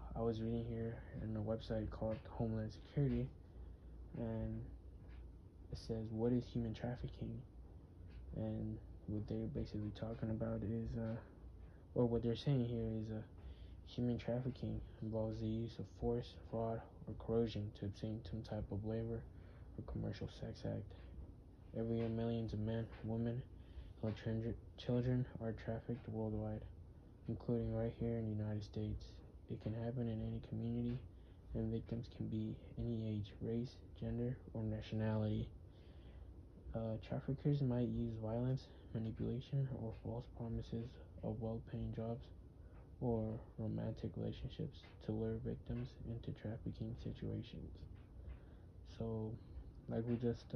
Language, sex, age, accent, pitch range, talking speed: English, male, 20-39, American, 95-115 Hz, 130 wpm